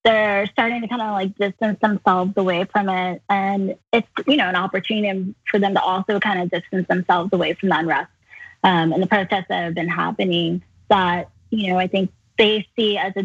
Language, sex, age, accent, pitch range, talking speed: English, female, 10-29, American, 180-210 Hz, 210 wpm